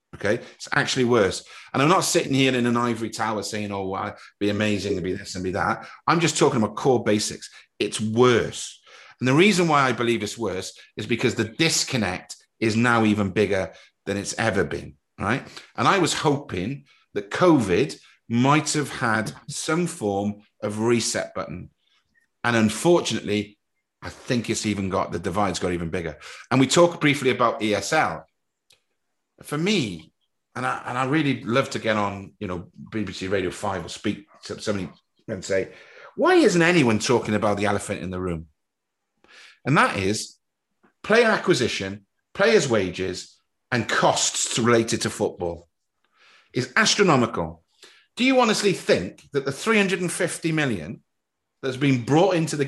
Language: English